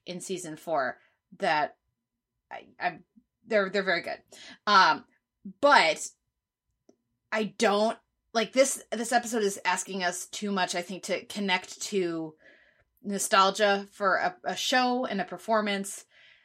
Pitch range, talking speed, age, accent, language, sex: 180-230 Hz, 130 wpm, 20-39, American, English, female